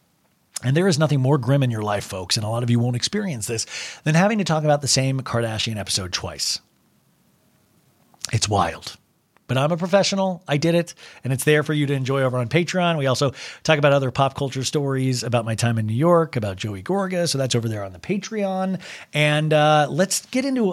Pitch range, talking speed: 115-170 Hz, 220 wpm